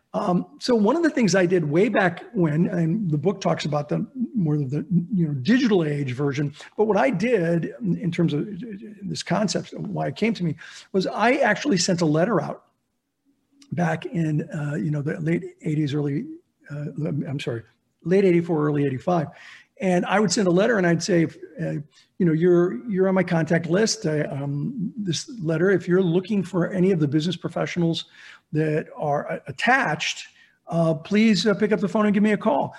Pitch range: 155-195 Hz